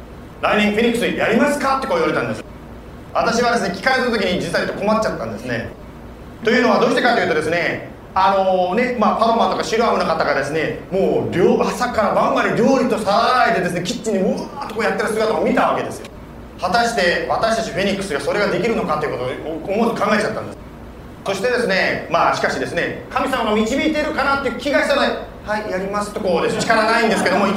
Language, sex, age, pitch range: Japanese, male, 40-59, 210-260 Hz